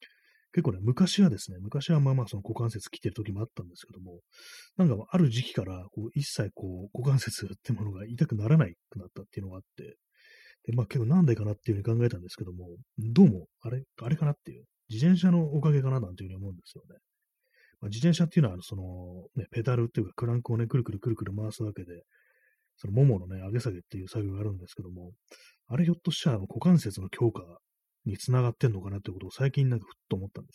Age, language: 30-49, Japanese